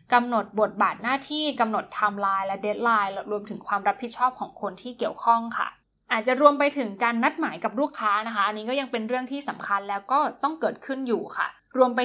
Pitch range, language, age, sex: 210-255 Hz, Thai, 10-29, female